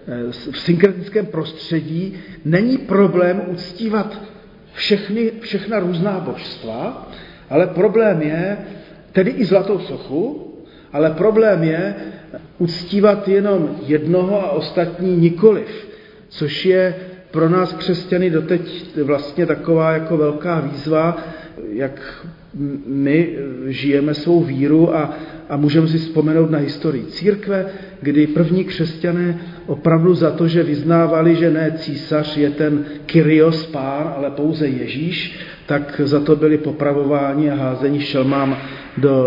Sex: male